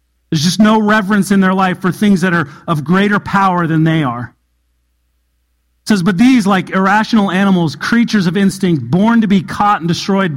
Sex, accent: male, American